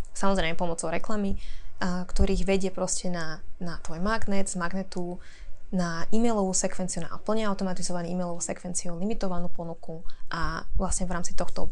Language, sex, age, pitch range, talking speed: Slovak, female, 20-39, 175-200 Hz, 140 wpm